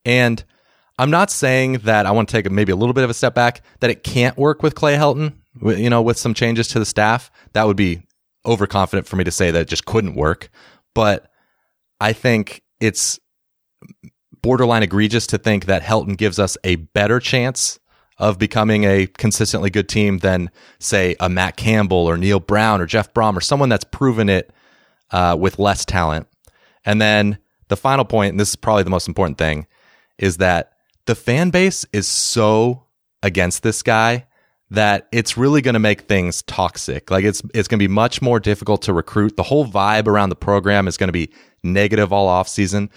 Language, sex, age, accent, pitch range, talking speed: English, male, 30-49, American, 95-115 Hz, 195 wpm